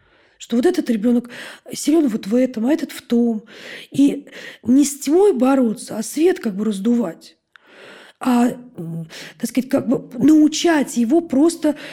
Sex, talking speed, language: female, 150 wpm, Russian